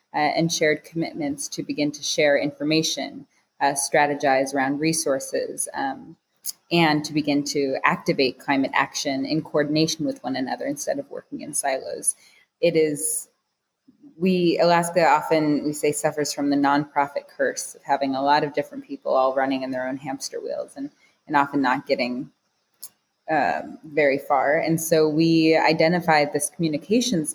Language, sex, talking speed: English, female, 155 wpm